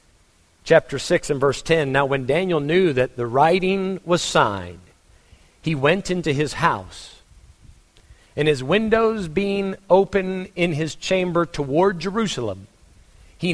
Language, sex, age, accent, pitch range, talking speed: English, male, 50-69, American, 110-180 Hz, 135 wpm